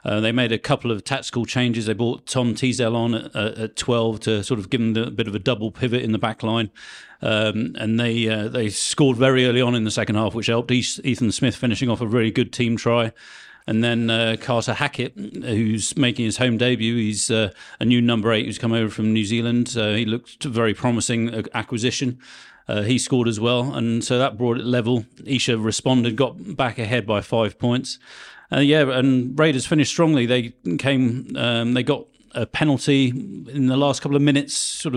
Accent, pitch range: British, 115-130 Hz